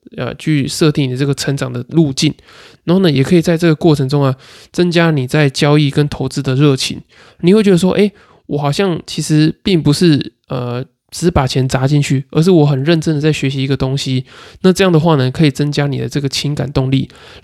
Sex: male